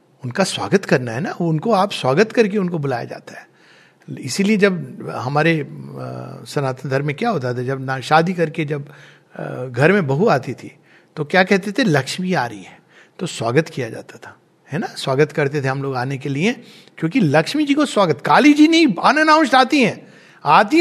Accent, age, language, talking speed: Indian, 60-79, English, 185 wpm